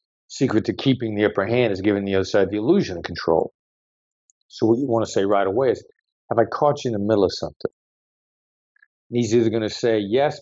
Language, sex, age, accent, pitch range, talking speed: English, male, 50-69, American, 105-125 Hz, 230 wpm